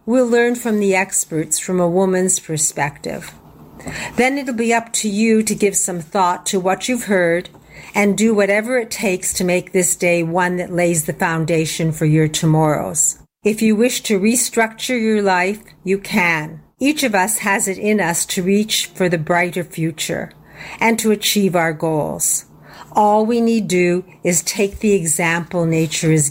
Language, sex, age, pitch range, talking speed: English, female, 50-69, 170-210 Hz, 175 wpm